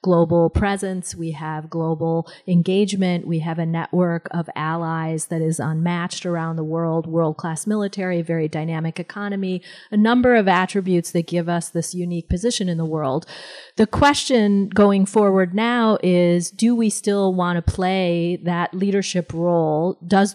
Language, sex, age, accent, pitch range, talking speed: English, female, 30-49, American, 170-200 Hz, 155 wpm